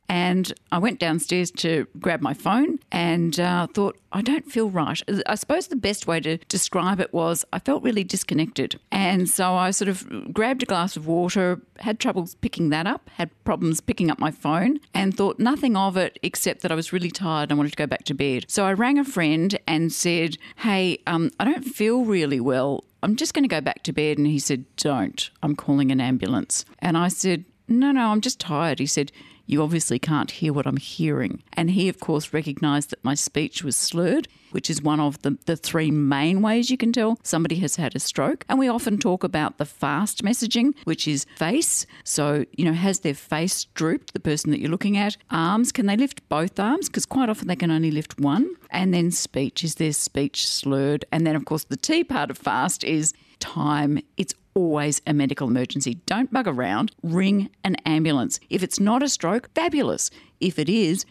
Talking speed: 215 wpm